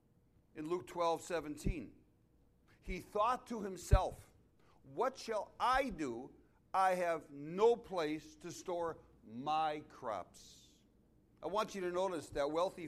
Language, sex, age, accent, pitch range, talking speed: English, male, 60-79, American, 130-170 Hz, 125 wpm